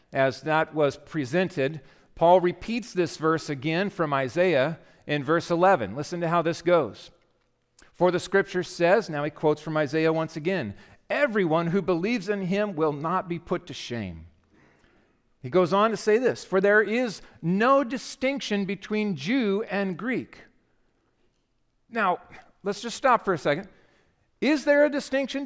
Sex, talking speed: male, 160 wpm